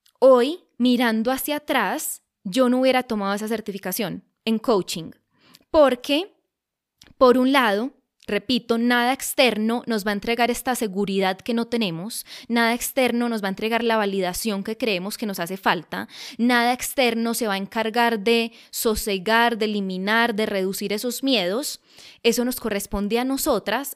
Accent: Colombian